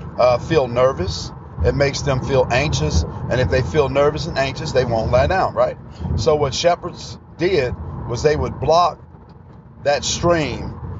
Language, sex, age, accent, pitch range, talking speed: English, male, 40-59, American, 125-155 Hz, 165 wpm